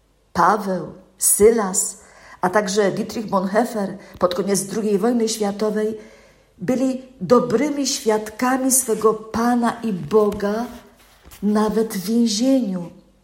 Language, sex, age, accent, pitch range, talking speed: Polish, female, 50-69, native, 185-235 Hz, 95 wpm